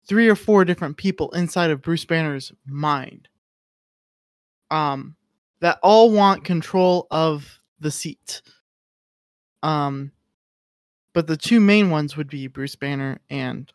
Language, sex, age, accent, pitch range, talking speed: English, male, 20-39, American, 150-190 Hz, 125 wpm